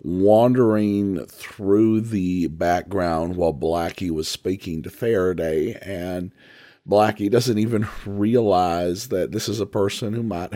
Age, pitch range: 50-69, 90-110 Hz